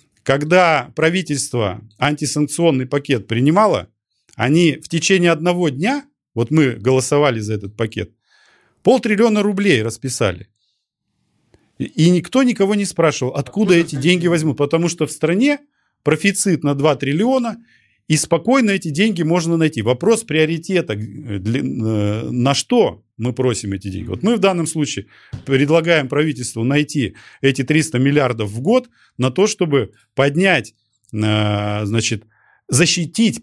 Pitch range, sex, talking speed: 110-170 Hz, male, 125 wpm